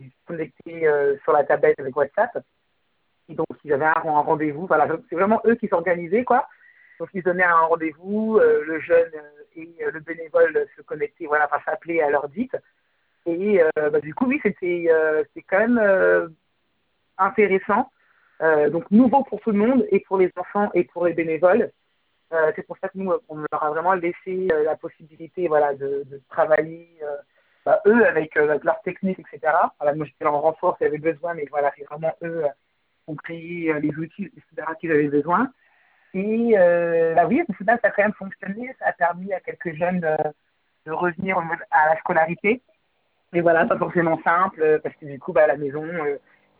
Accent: French